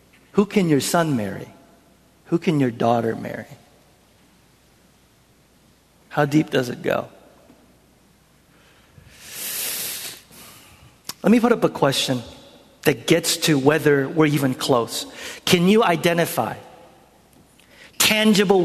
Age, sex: 50-69, male